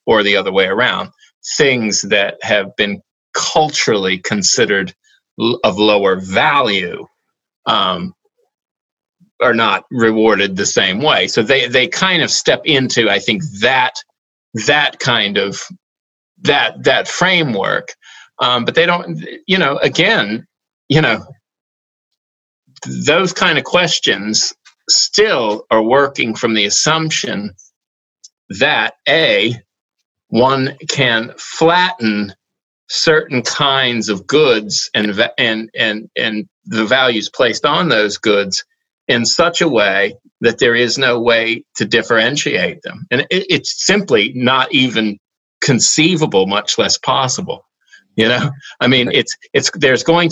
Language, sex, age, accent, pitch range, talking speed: English, male, 30-49, American, 110-160 Hz, 125 wpm